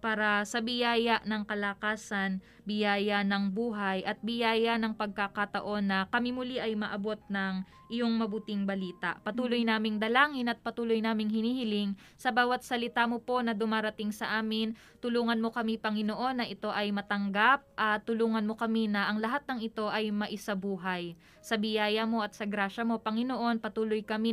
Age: 20-39